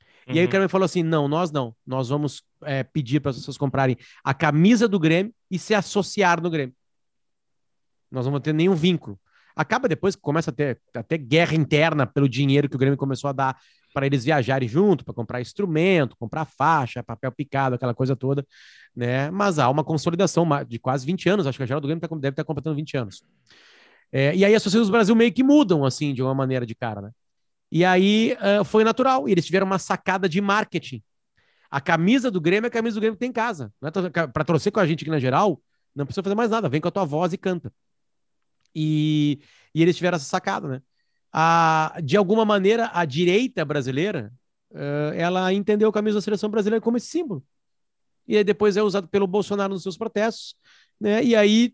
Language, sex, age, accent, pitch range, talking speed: Portuguese, male, 30-49, Brazilian, 140-200 Hz, 210 wpm